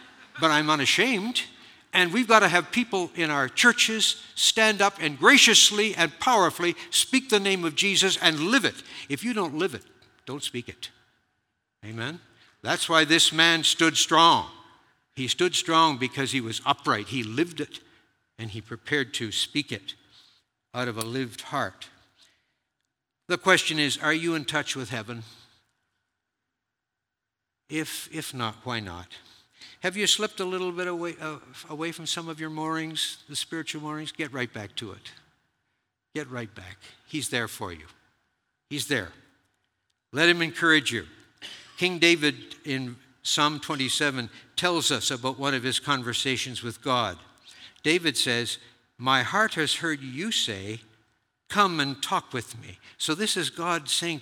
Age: 60-79